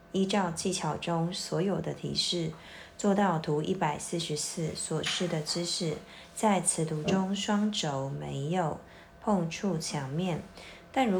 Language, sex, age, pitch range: Chinese, female, 30-49, 155-190 Hz